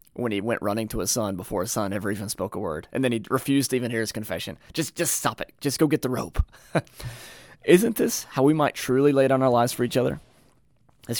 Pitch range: 105-135 Hz